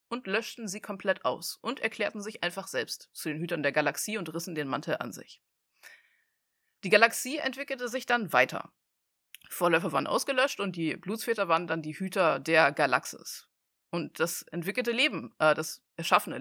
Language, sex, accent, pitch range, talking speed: German, female, German, 170-245 Hz, 160 wpm